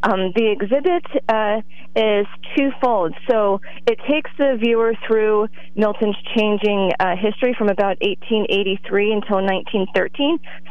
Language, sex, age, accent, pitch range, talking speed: English, female, 30-49, American, 175-210 Hz, 120 wpm